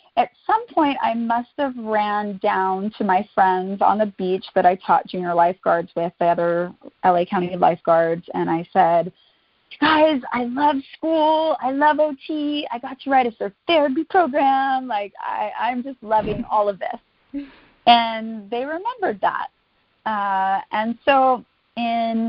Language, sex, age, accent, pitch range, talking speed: English, female, 30-49, American, 185-250 Hz, 155 wpm